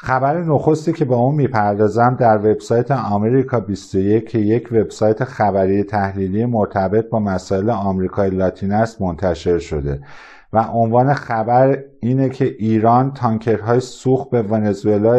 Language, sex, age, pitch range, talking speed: Persian, male, 50-69, 100-120 Hz, 130 wpm